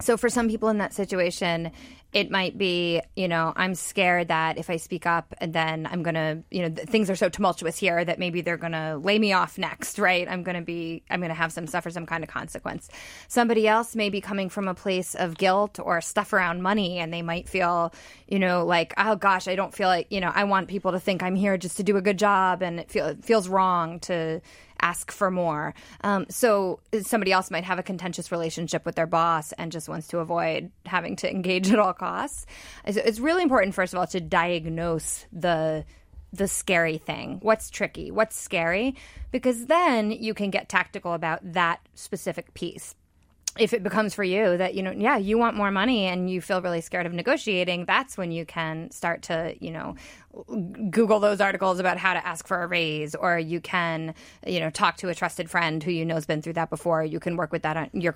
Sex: female